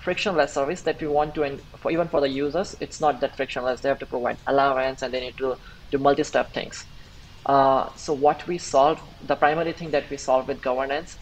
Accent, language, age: Indian, English, 20-39